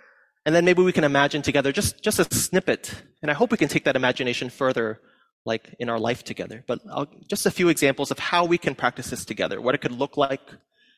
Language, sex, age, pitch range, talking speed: English, male, 30-49, 125-180 Hz, 235 wpm